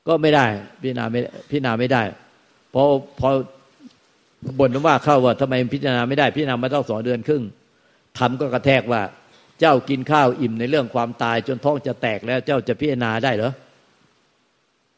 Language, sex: Thai, male